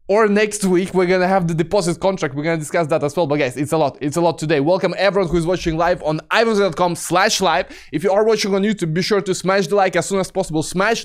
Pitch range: 155-195 Hz